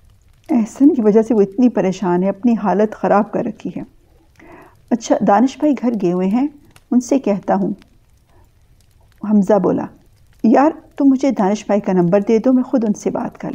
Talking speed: 185 wpm